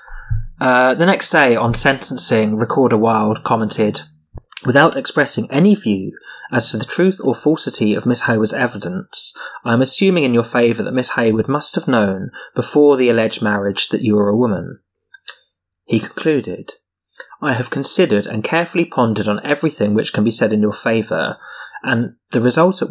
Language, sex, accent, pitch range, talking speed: English, male, British, 105-140 Hz, 170 wpm